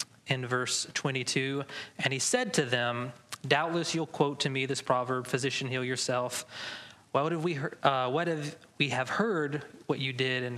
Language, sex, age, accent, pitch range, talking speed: English, male, 30-49, American, 125-160 Hz, 185 wpm